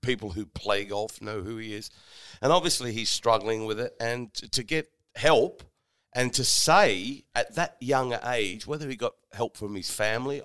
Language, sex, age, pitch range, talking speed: English, male, 50-69, 105-130 Hz, 185 wpm